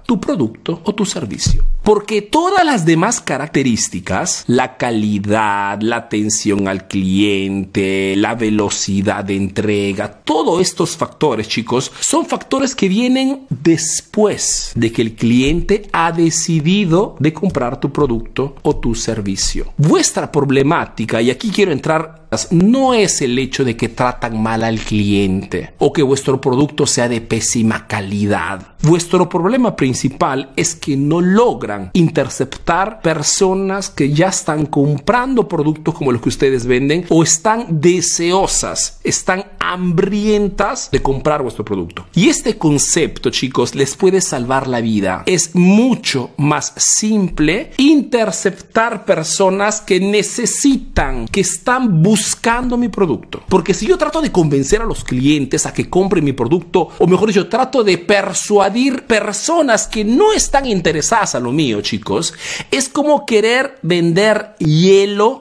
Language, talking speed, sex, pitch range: Spanish, 140 wpm, male, 125-205 Hz